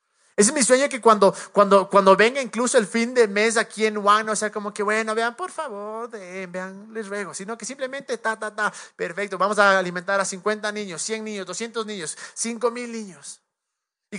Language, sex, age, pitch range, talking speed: Spanish, male, 30-49, 195-240 Hz, 210 wpm